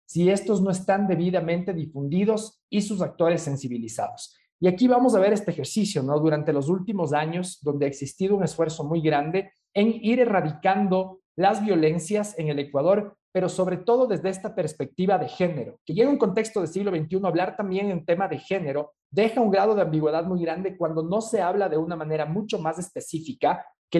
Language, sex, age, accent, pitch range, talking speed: Spanish, male, 40-59, Mexican, 155-200 Hz, 195 wpm